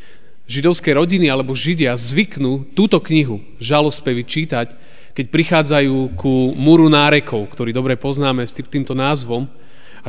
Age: 30-49